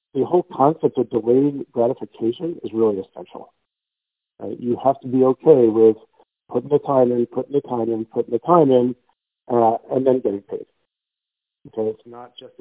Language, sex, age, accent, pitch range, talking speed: English, male, 60-79, American, 110-140 Hz, 175 wpm